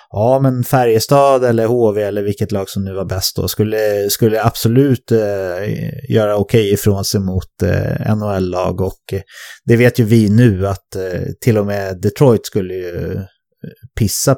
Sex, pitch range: male, 95-125 Hz